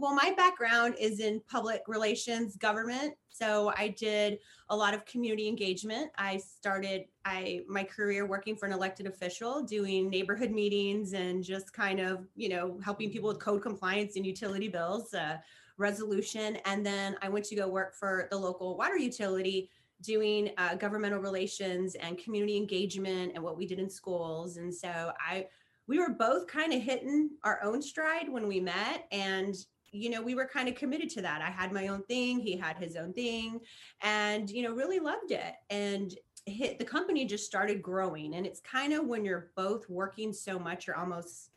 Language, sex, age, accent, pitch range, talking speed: English, female, 30-49, American, 185-215 Hz, 190 wpm